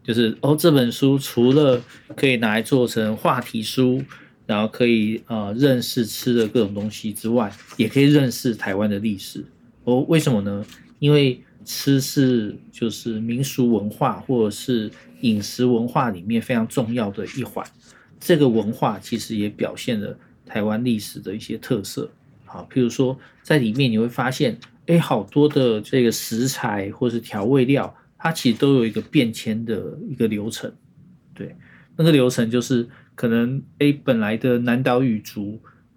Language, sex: Chinese, male